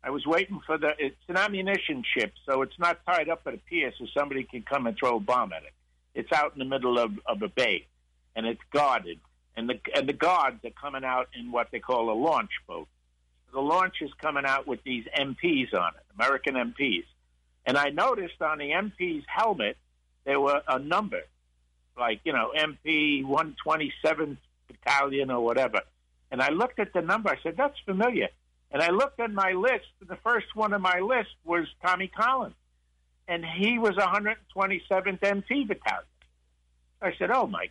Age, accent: 60-79, American